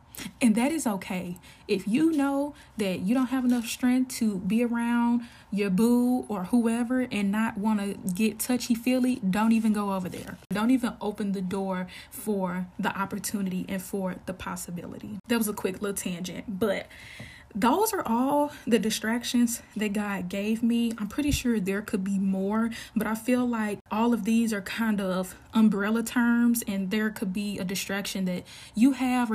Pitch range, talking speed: 195-230 Hz, 180 wpm